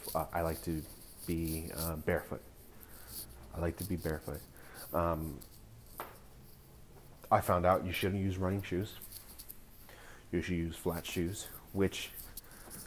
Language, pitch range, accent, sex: English, 85-105 Hz, American, male